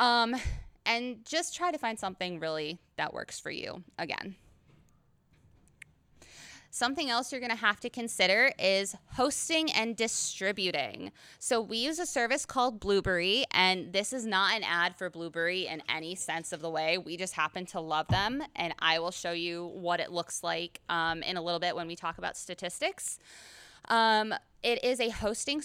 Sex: female